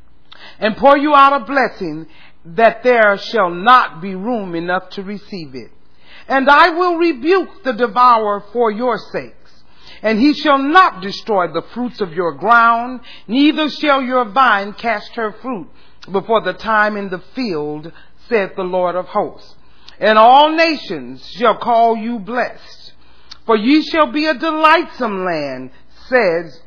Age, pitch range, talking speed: 40-59, 205-285 Hz, 155 wpm